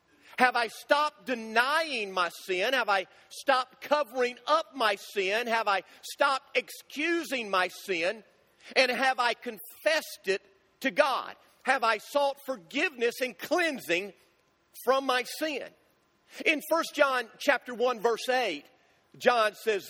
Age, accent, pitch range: 50-69, American, 225-295 Hz